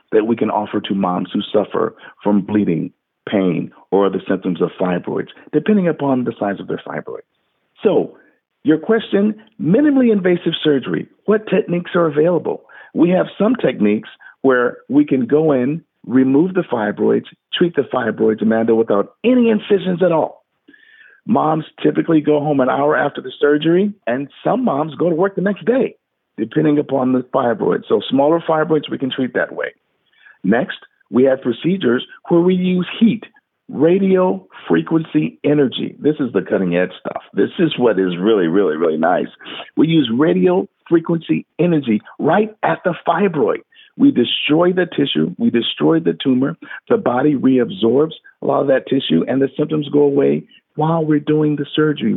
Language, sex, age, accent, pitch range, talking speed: English, male, 50-69, American, 130-185 Hz, 165 wpm